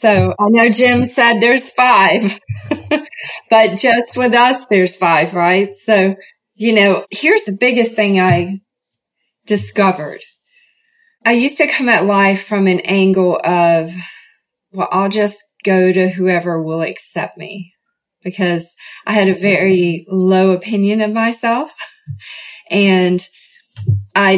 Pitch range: 190-235 Hz